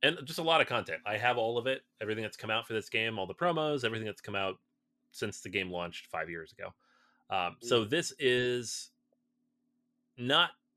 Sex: male